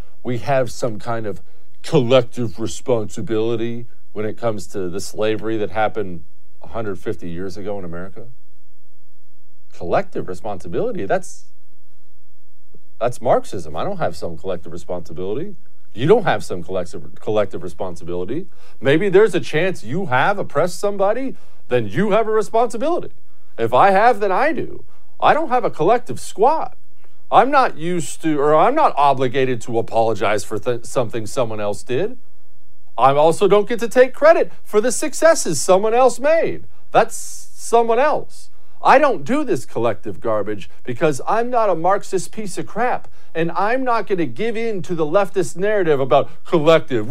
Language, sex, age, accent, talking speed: English, male, 50-69, American, 155 wpm